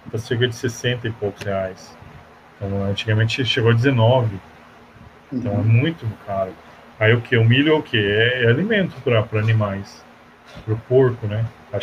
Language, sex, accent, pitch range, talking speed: Portuguese, male, Brazilian, 105-125 Hz, 170 wpm